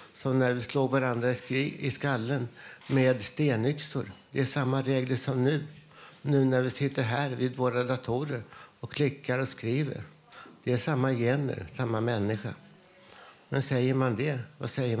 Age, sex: 60-79, male